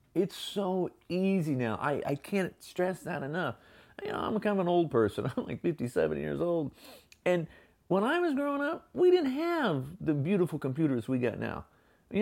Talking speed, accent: 190 wpm, American